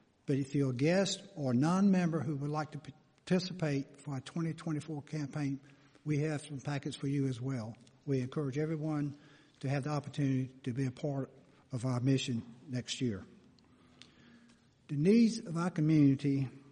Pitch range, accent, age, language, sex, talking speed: 135-165 Hz, American, 60-79, English, male, 160 wpm